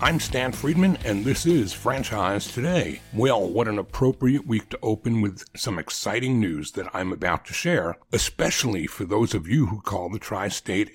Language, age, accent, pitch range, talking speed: English, 60-79, American, 105-150 Hz, 180 wpm